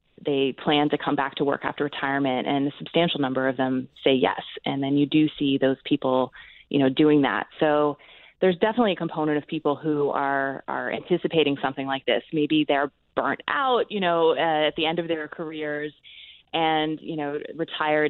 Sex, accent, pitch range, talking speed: female, American, 140-155 Hz, 195 wpm